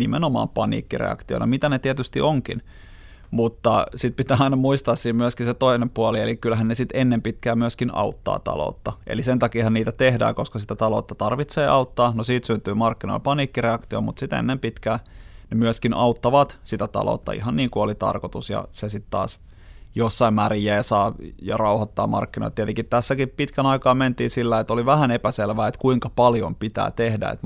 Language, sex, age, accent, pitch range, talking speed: Finnish, male, 30-49, native, 105-120 Hz, 175 wpm